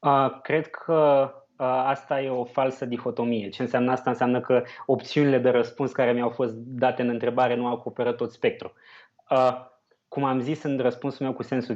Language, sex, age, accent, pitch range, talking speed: Romanian, male, 20-39, native, 115-135 Hz, 185 wpm